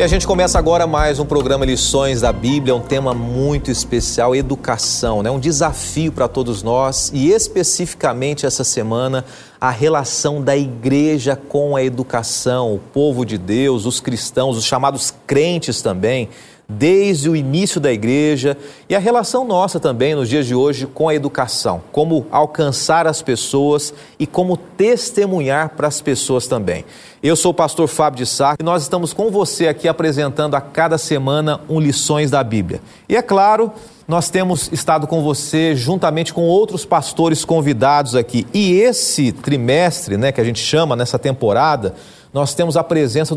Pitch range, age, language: 130-165 Hz, 40-59, Portuguese